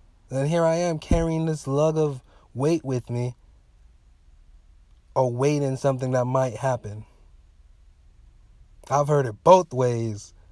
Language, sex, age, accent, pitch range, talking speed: English, male, 20-39, American, 95-150 Hz, 120 wpm